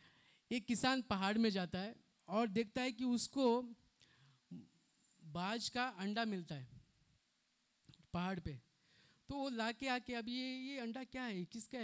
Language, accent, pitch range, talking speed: Hindi, native, 180-235 Hz, 150 wpm